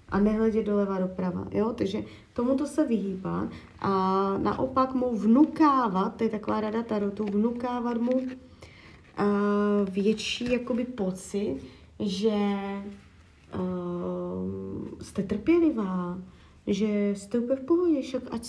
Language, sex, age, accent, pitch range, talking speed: Czech, female, 30-49, native, 200-255 Hz, 110 wpm